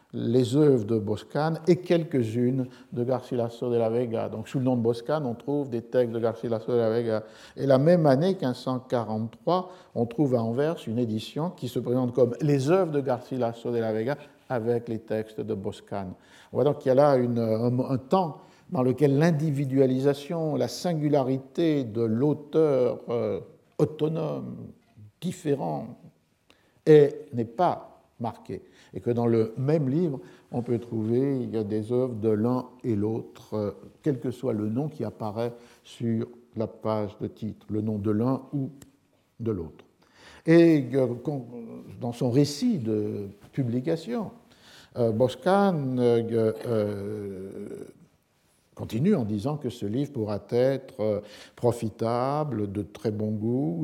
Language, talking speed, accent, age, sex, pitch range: French, 145 wpm, French, 50-69, male, 115-145 Hz